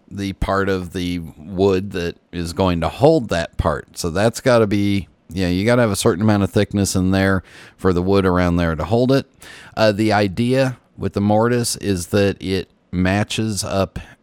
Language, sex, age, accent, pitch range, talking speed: English, male, 40-59, American, 85-105 Hz, 205 wpm